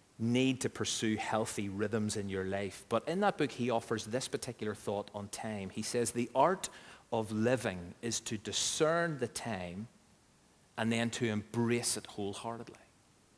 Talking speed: 160 wpm